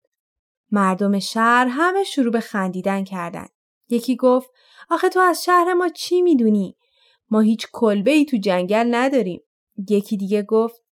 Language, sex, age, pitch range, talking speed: Persian, female, 20-39, 205-290 Hz, 140 wpm